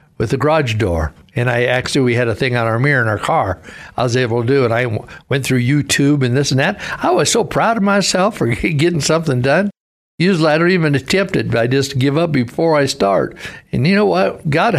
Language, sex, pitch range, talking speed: English, male, 115-145 Hz, 235 wpm